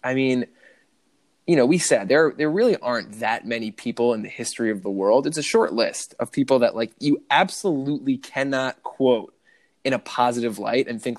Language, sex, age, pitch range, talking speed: English, male, 20-39, 115-145 Hz, 200 wpm